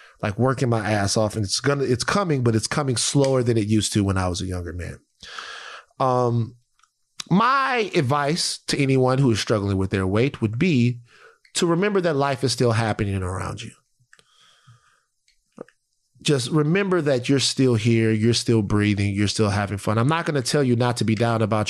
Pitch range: 115-150 Hz